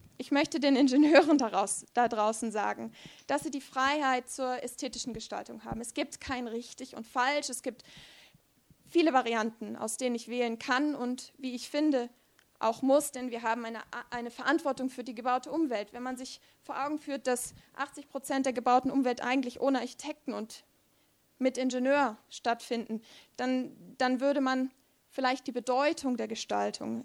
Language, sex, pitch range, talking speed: English, female, 235-275 Hz, 165 wpm